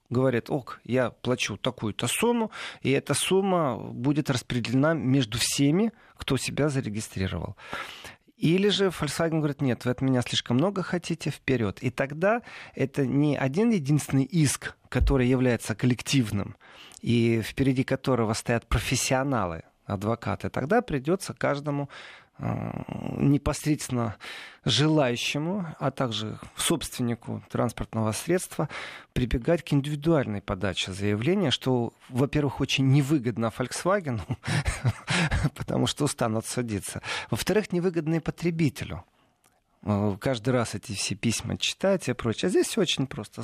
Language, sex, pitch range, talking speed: Russian, male, 115-160 Hz, 115 wpm